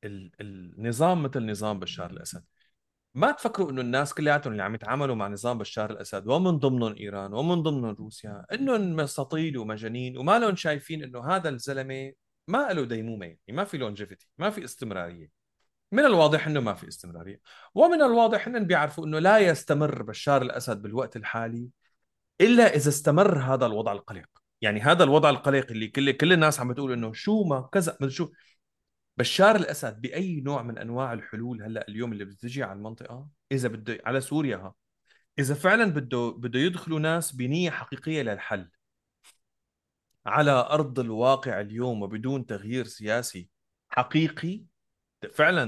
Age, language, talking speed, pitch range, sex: 30-49, Arabic, 150 wpm, 115-160 Hz, male